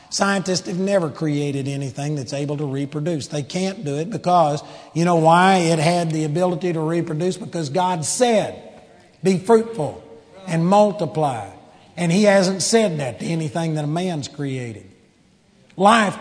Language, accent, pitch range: English, American, 145-190 Hz